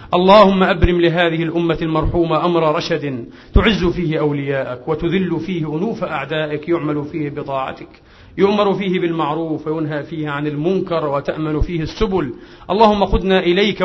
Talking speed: 130 wpm